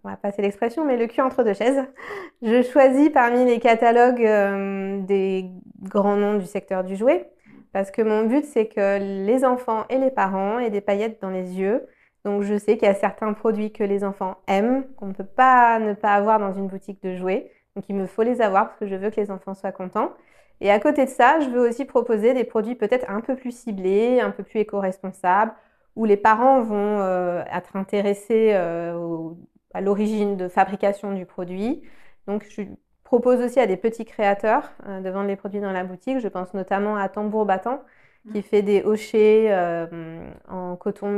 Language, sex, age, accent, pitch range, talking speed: French, female, 20-39, French, 195-230 Hz, 205 wpm